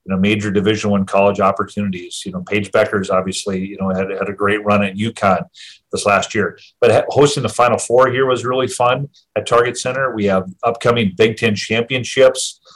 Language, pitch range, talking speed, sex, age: English, 100-120 Hz, 200 wpm, male, 40-59